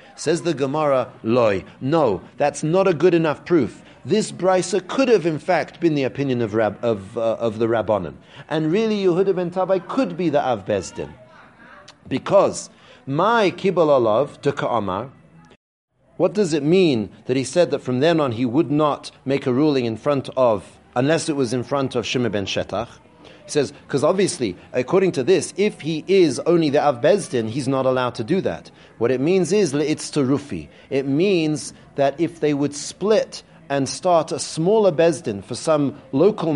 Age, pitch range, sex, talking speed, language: 40-59, 130-180 Hz, male, 180 wpm, English